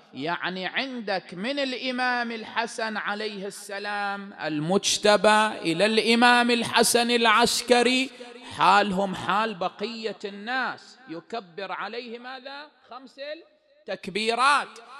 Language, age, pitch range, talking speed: English, 30-49, 140-230 Hz, 85 wpm